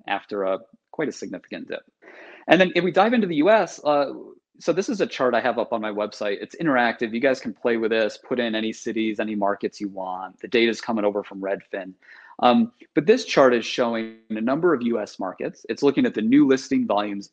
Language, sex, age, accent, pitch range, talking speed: English, male, 30-49, American, 110-145 Hz, 230 wpm